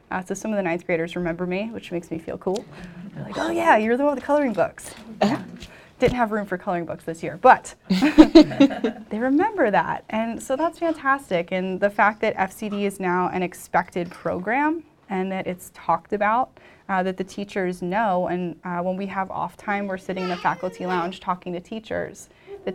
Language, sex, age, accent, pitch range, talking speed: English, female, 10-29, American, 180-220 Hz, 205 wpm